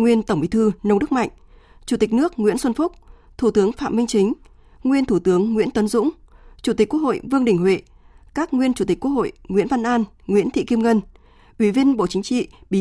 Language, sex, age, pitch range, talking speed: Vietnamese, female, 20-39, 195-245 Hz, 235 wpm